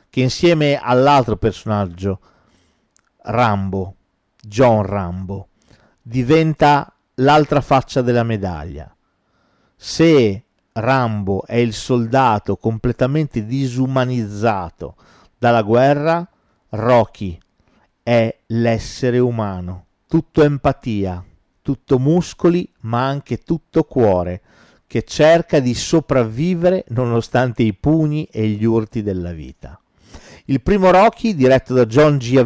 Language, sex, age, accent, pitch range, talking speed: Italian, male, 50-69, native, 110-155 Hz, 100 wpm